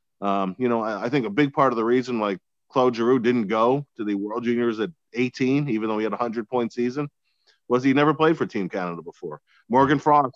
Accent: American